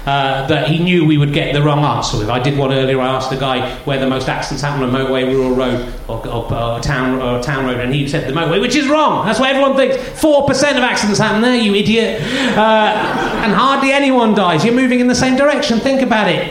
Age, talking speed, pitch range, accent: 30-49, 255 wpm, 140-215 Hz, British